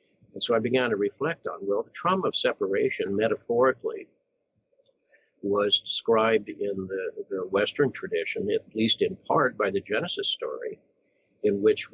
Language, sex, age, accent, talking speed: English, male, 50-69, American, 150 wpm